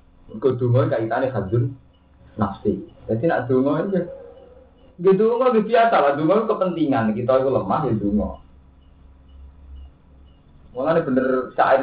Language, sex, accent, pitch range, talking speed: Indonesian, male, native, 105-155 Hz, 125 wpm